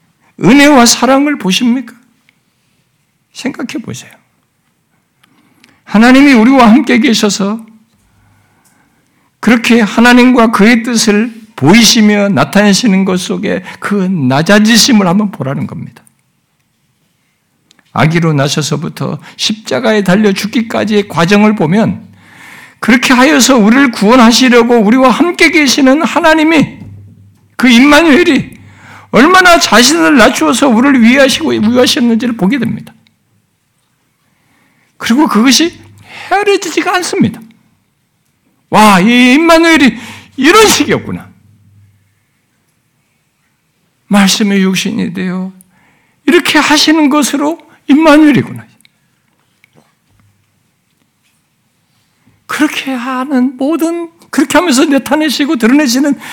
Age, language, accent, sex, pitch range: 60-79, Korean, native, male, 205-290 Hz